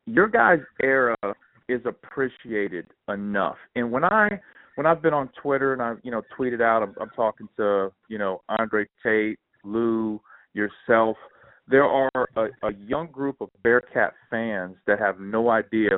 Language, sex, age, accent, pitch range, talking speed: English, male, 40-59, American, 105-130 Hz, 170 wpm